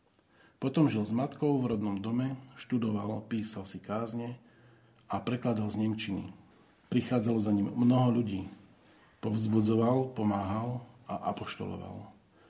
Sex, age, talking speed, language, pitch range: male, 50-69, 115 wpm, Slovak, 105-120 Hz